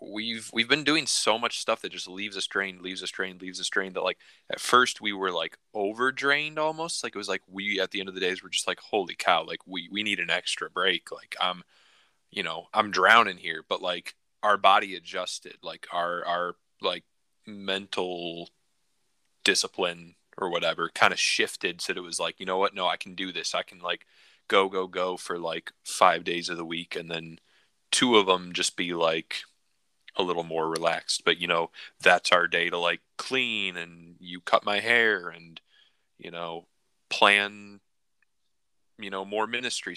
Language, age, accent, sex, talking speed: English, 20-39, American, male, 200 wpm